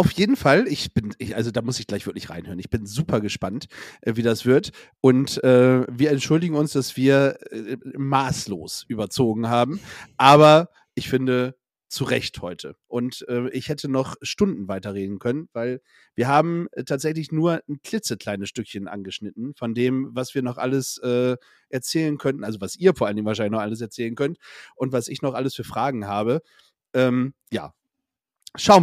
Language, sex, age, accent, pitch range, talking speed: German, male, 40-59, German, 115-155 Hz, 175 wpm